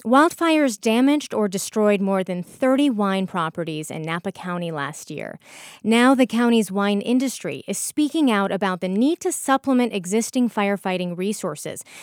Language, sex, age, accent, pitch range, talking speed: English, female, 30-49, American, 190-250 Hz, 150 wpm